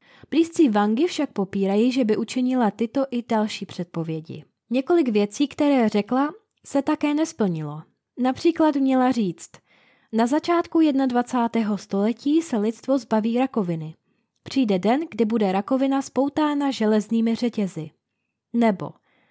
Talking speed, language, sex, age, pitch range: 120 wpm, Czech, female, 20-39, 210-270 Hz